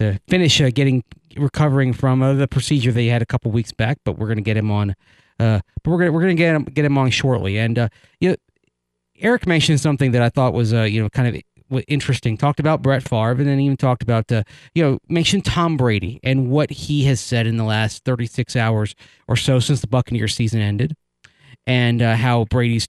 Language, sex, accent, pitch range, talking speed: English, male, American, 115-145 Hz, 230 wpm